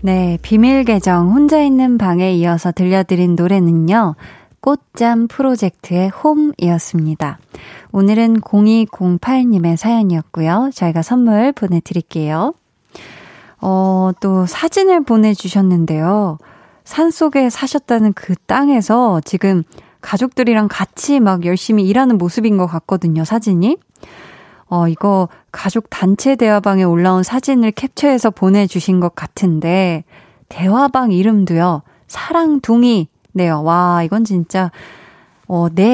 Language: Korean